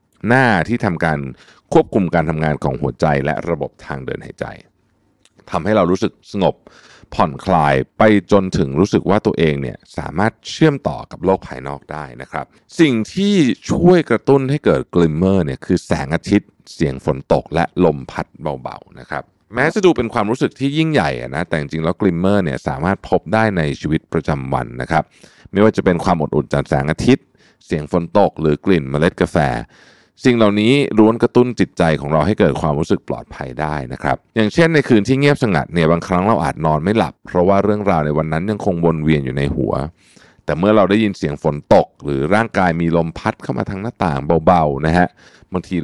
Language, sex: Thai, male